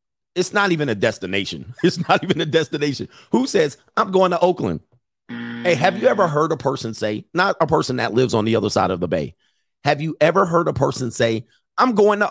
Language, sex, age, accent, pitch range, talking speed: English, male, 50-69, American, 110-170 Hz, 225 wpm